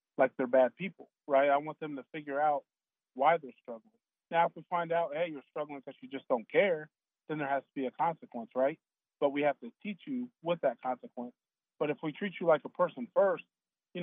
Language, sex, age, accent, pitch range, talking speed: English, male, 30-49, American, 130-160 Hz, 230 wpm